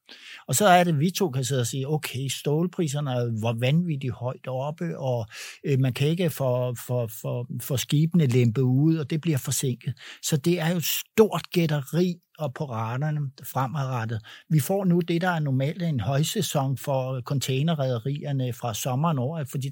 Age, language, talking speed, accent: 60-79, Danish, 170 wpm, native